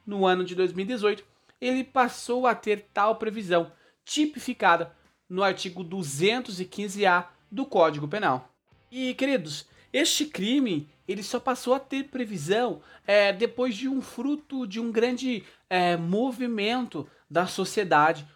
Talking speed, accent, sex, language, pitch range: 120 wpm, Brazilian, male, Portuguese, 175-245 Hz